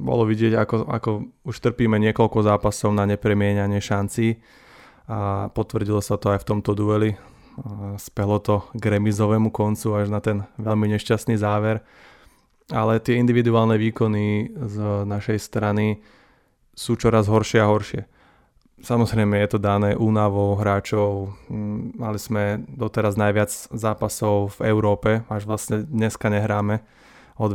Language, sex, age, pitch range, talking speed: Slovak, male, 20-39, 105-110 Hz, 130 wpm